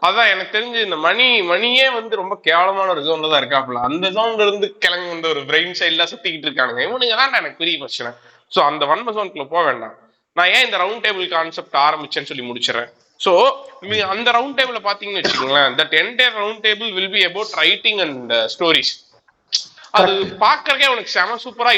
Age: 20-39